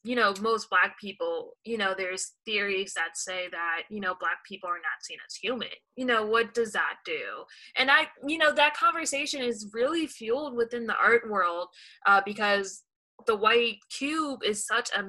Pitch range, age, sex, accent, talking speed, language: 205-295 Hz, 20-39, female, American, 190 wpm, English